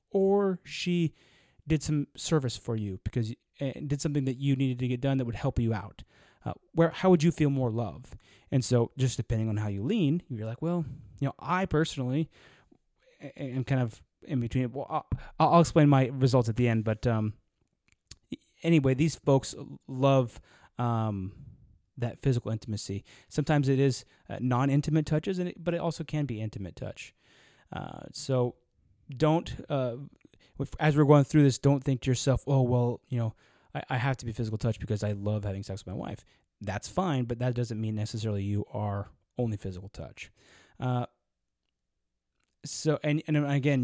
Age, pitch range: 20-39, 110-145 Hz